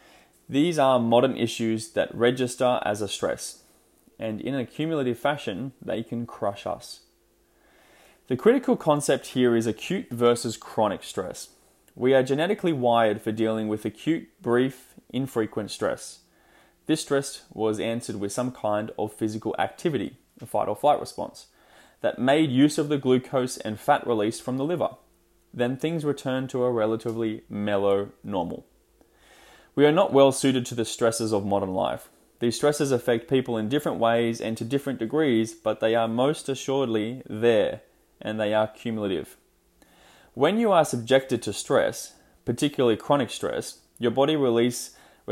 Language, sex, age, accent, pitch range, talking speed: English, male, 20-39, Australian, 110-135 Hz, 150 wpm